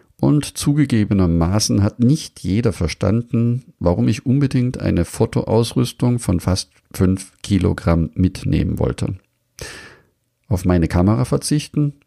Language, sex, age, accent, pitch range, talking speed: German, male, 50-69, German, 90-120 Hz, 105 wpm